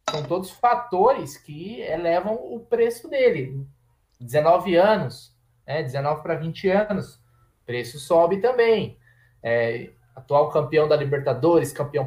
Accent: Brazilian